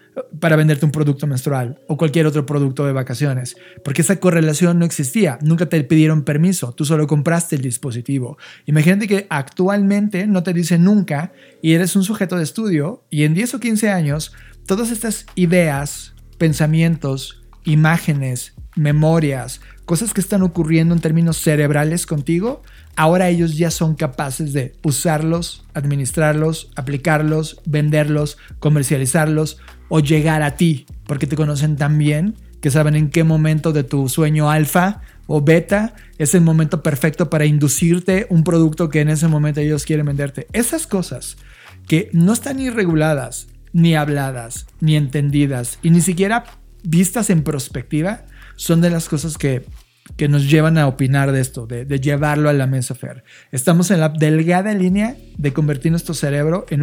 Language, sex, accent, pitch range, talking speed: Spanish, male, Mexican, 145-170 Hz, 160 wpm